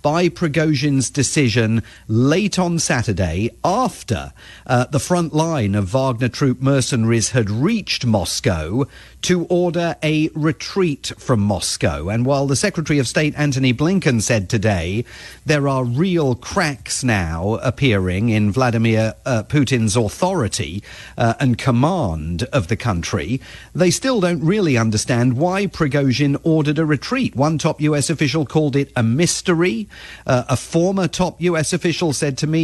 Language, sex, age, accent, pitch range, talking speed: English, male, 40-59, British, 115-160 Hz, 145 wpm